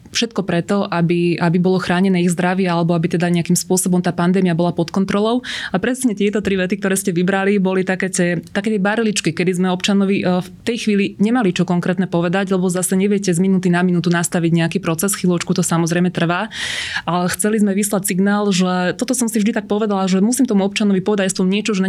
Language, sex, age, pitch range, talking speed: Slovak, female, 20-39, 180-200 Hz, 210 wpm